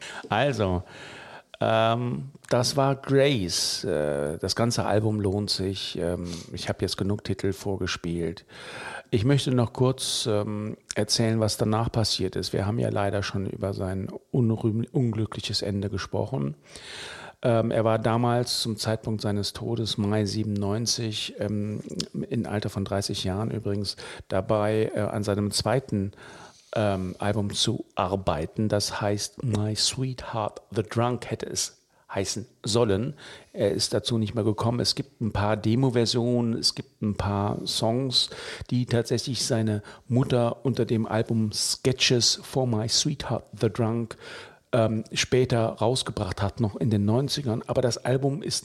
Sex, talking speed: male, 140 wpm